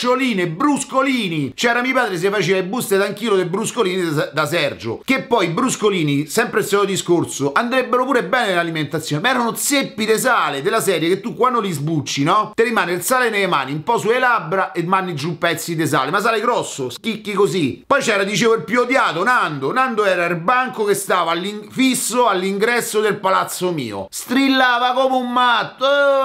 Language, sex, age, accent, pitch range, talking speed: Italian, male, 40-59, native, 170-240 Hz, 190 wpm